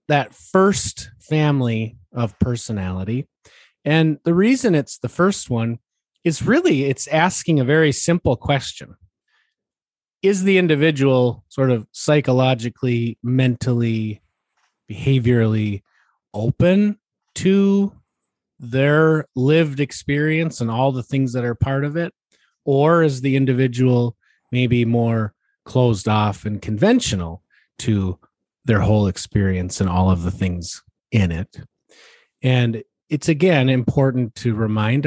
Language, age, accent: English, 30-49, American